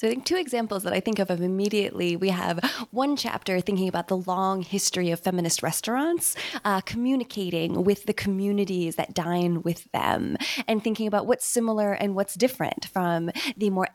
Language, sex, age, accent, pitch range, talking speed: English, female, 20-39, American, 185-225 Hz, 180 wpm